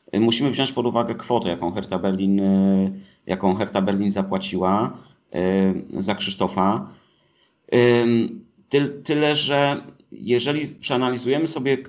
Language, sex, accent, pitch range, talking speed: Polish, male, native, 100-120 Hz, 95 wpm